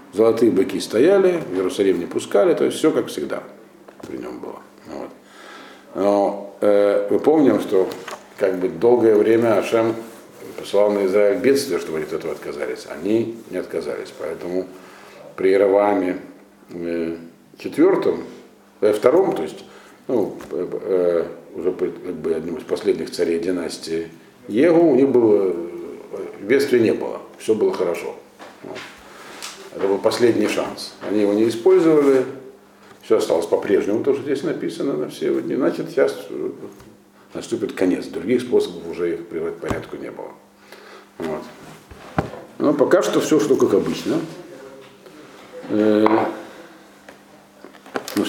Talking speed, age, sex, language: 130 wpm, 50-69, male, Russian